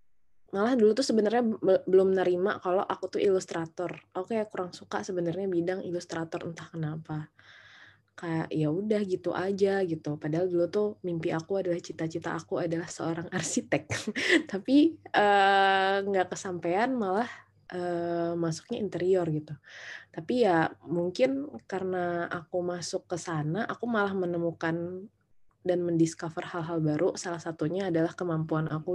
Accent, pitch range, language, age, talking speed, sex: native, 165-200 Hz, Indonesian, 20-39, 135 wpm, female